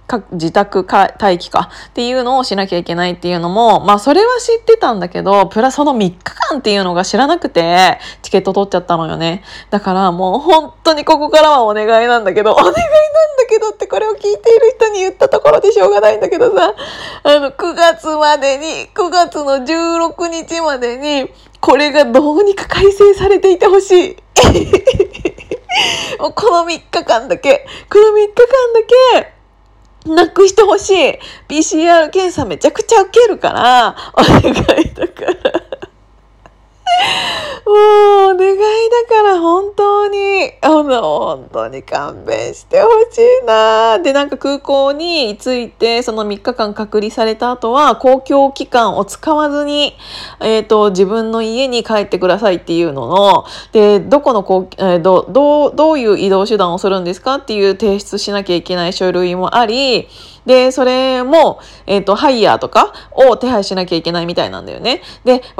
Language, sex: Japanese, female